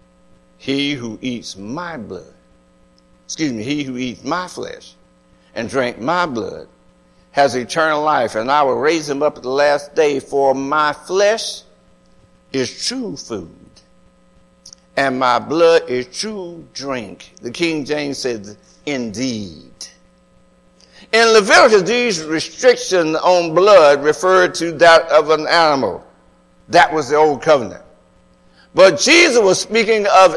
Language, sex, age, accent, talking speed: English, male, 60-79, American, 135 wpm